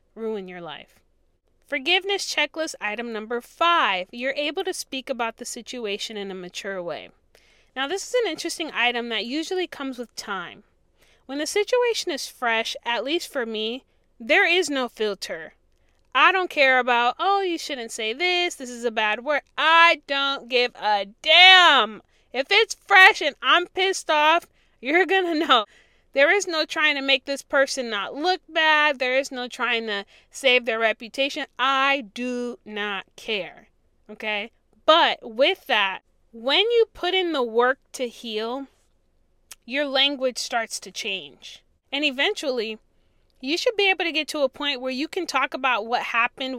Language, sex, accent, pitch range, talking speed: English, female, American, 235-320 Hz, 165 wpm